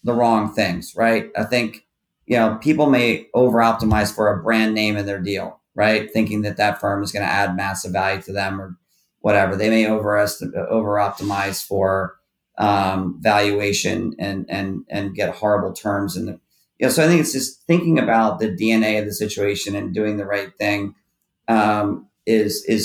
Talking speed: 185 wpm